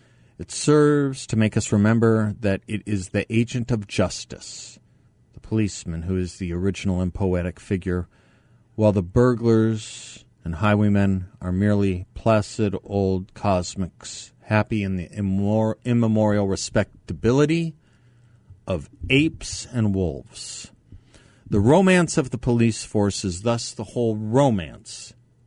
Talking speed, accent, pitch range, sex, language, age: 125 wpm, American, 95-120 Hz, male, English, 50-69